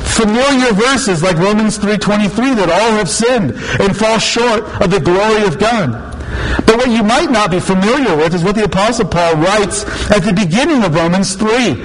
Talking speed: 185 wpm